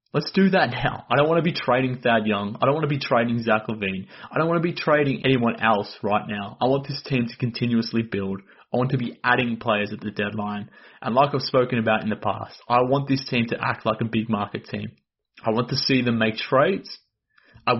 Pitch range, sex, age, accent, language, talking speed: 110-135 Hz, male, 20-39, Australian, English, 245 wpm